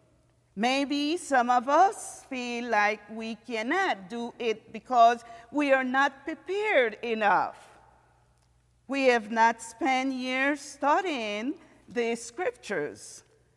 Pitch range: 210-275 Hz